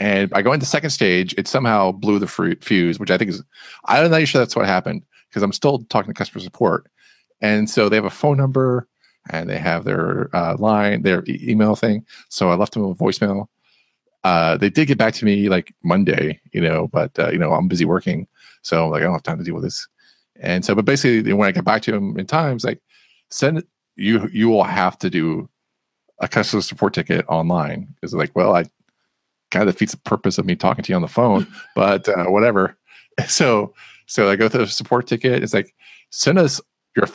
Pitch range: 100-135 Hz